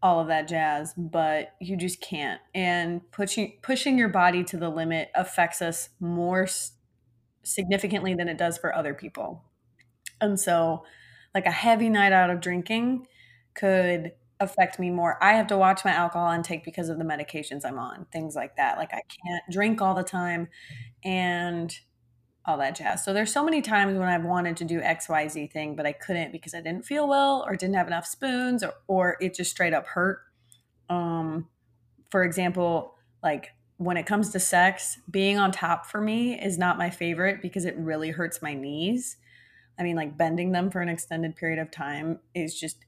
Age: 20-39